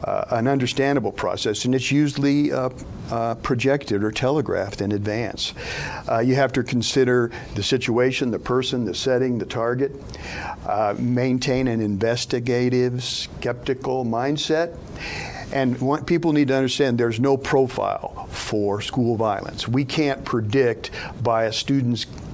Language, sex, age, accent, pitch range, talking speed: English, male, 50-69, American, 110-130 Hz, 135 wpm